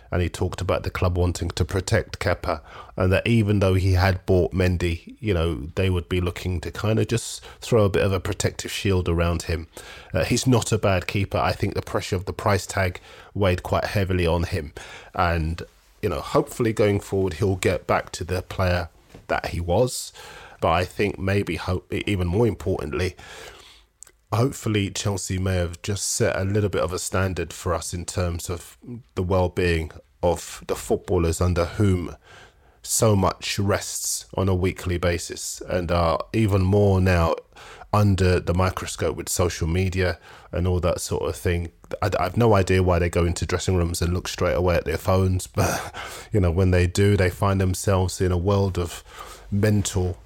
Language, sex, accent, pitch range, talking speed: English, male, British, 90-100 Hz, 190 wpm